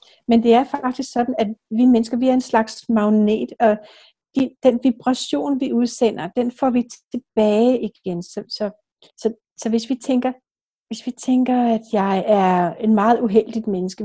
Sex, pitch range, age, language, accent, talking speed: female, 215-255 Hz, 60-79, Danish, native, 170 wpm